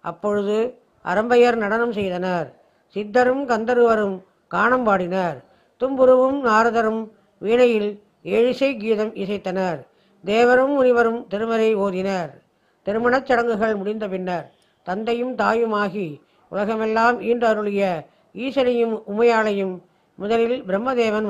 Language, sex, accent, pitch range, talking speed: Tamil, female, native, 190-235 Hz, 85 wpm